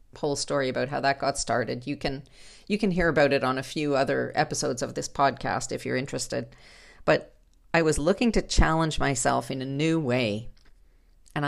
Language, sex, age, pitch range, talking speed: English, female, 40-59, 130-165 Hz, 190 wpm